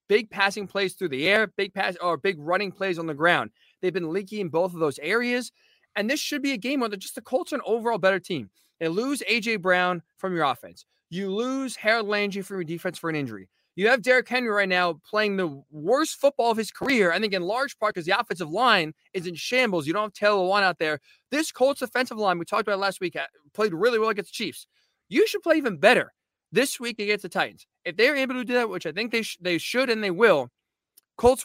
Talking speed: 250 wpm